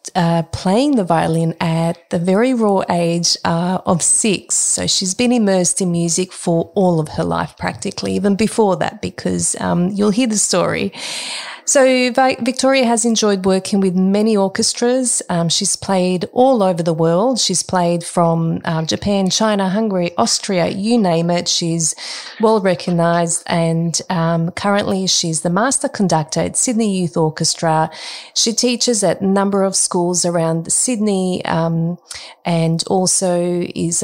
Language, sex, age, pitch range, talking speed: English, female, 30-49, 170-215 Hz, 150 wpm